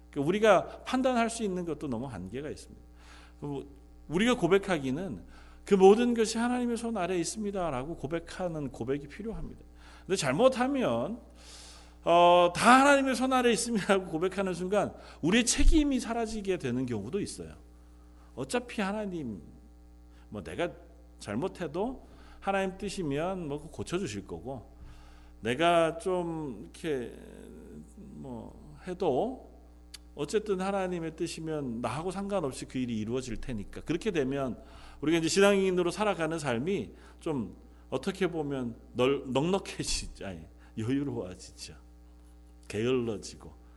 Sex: male